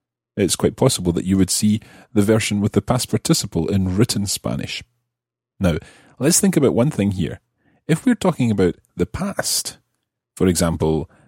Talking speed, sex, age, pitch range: 165 wpm, male, 30-49, 90-120 Hz